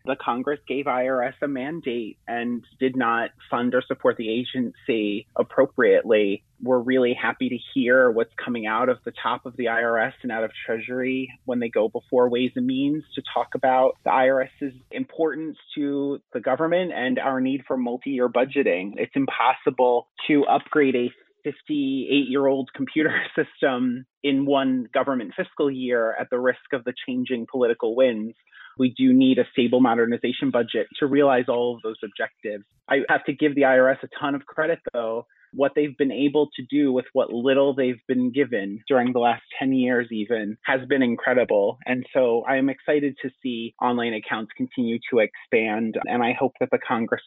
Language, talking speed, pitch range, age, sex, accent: English, 175 wpm, 120-140 Hz, 30-49, male, American